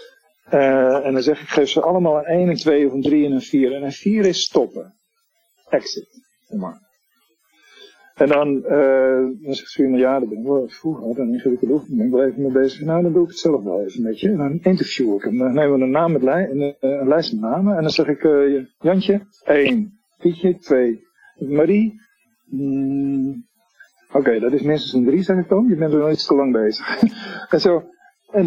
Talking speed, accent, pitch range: 220 wpm, Dutch, 140-215 Hz